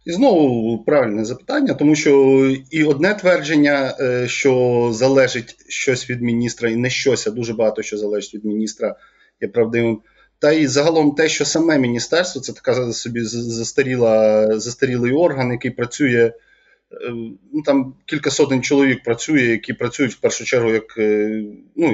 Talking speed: 145 wpm